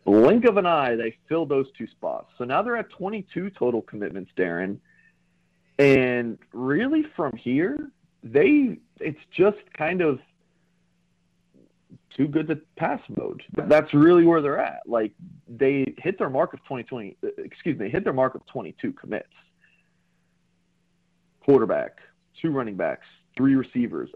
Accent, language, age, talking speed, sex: American, English, 40-59, 140 wpm, male